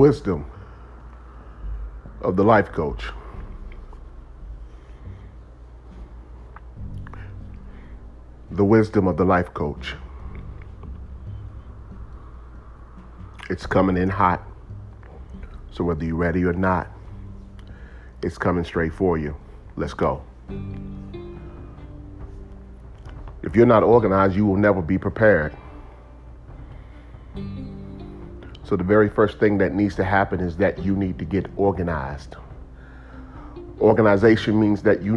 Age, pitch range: 40-59, 70-105 Hz